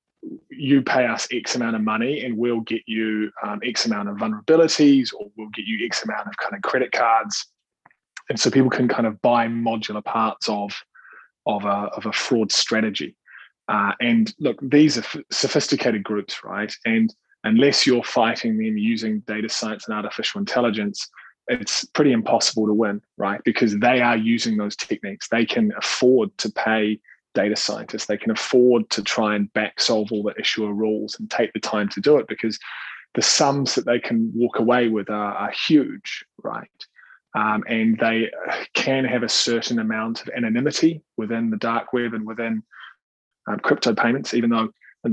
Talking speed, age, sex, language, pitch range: 180 wpm, 20-39, male, English, 110-135 Hz